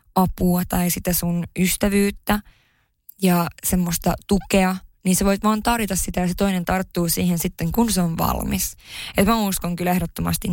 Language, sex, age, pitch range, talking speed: Finnish, female, 20-39, 175-190 Hz, 165 wpm